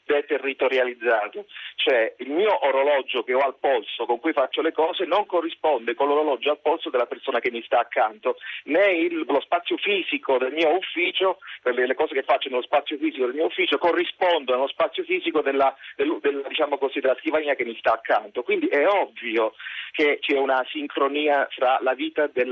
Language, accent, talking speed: Italian, native, 180 wpm